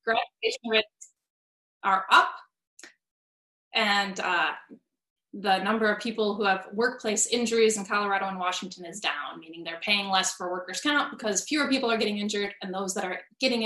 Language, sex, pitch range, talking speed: English, female, 185-240 Hz, 165 wpm